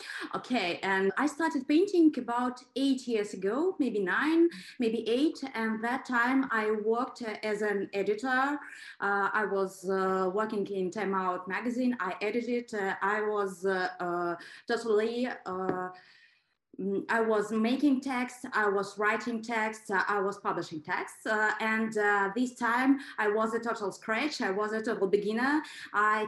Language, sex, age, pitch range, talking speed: English, female, 20-39, 200-260 Hz, 155 wpm